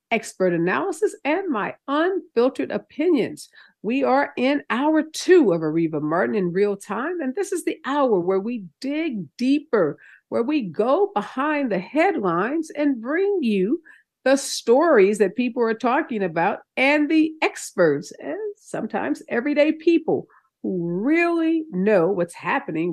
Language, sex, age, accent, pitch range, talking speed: English, female, 50-69, American, 200-305 Hz, 140 wpm